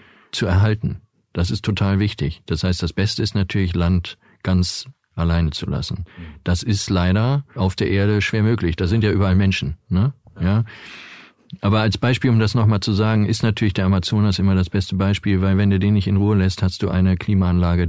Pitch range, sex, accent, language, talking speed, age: 90-105 Hz, male, German, German, 200 wpm, 50-69